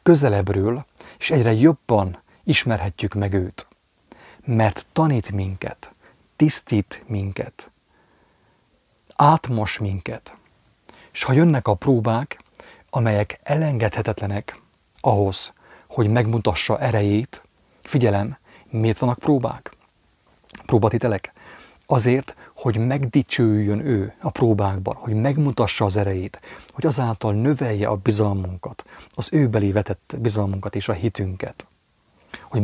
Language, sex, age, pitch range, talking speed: English, male, 30-49, 100-130 Hz, 95 wpm